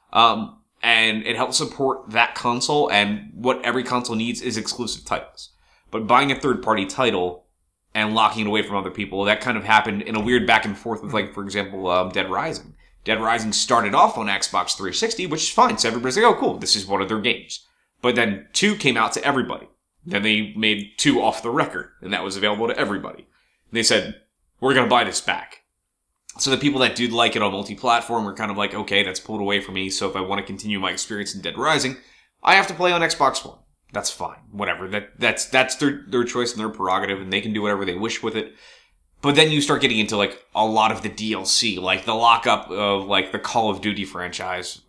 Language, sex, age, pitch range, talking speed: English, male, 20-39, 100-120 Hz, 230 wpm